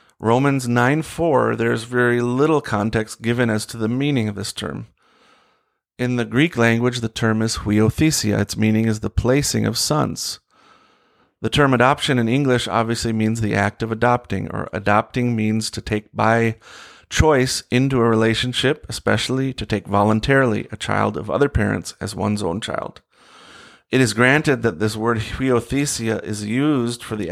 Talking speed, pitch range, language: 165 wpm, 110-130 Hz, English